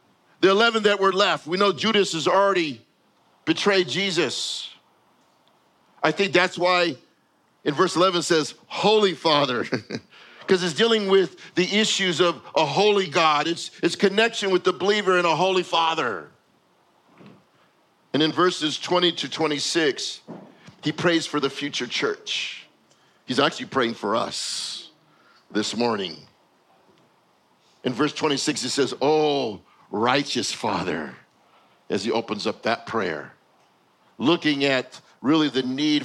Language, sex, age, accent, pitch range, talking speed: English, male, 50-69, American, 150-195 Hz, 135 wpm